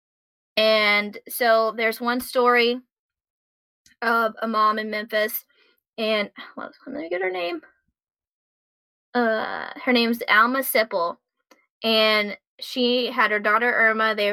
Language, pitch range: English, 215-255 Hz